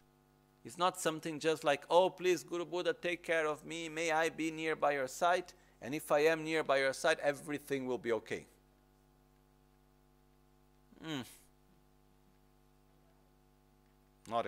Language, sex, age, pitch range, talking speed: Italian, male, 50-69, 115-155 Hz, 140 wpm